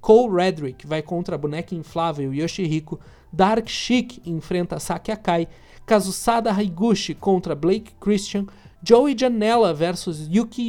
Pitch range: 160-210 Hz